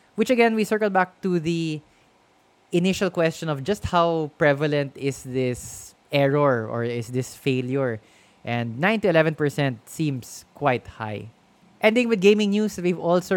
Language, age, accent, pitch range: English, 20-39, Filipino, 130-170 Hz